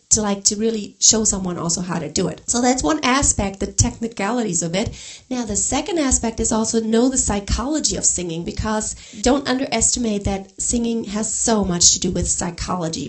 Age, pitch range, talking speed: 40-59, 195-255 Hz, 195 wpm